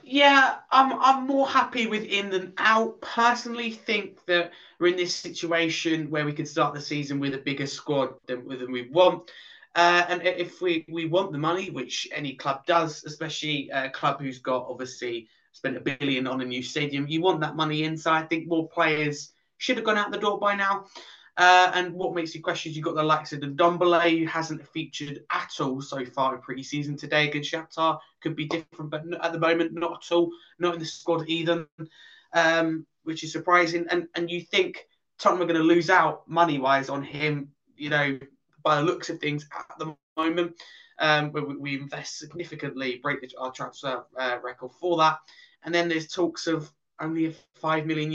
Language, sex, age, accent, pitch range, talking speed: English, male, 20-39, British, 145-175 Hz, 200 wpm